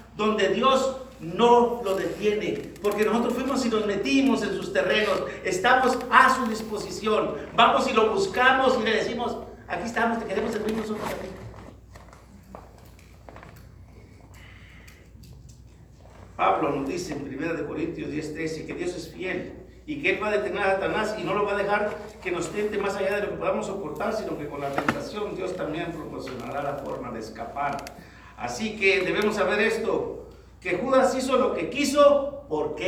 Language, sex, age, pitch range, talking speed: Spanish, male, 50-69, 185-245 Hz, 165 wpm